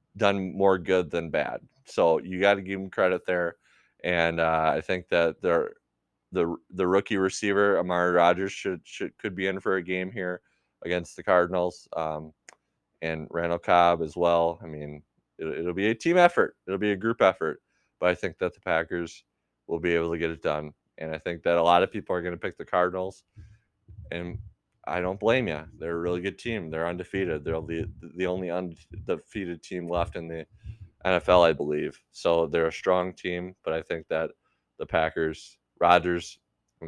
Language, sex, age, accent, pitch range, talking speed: English, male, 20-39, American, 85-95 Hz, 195 wpm